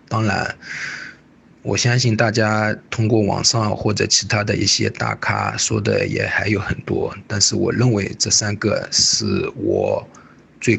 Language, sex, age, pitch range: Chinese, male, 20-39, 100-120 Hz